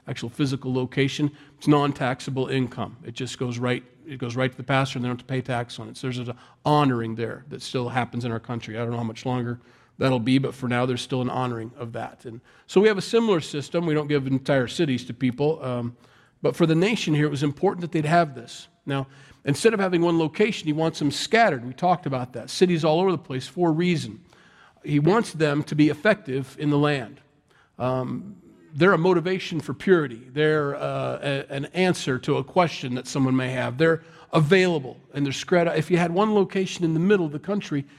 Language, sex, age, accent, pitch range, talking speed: English, male, 40-59, American, 130-165 Hz, 230 wpm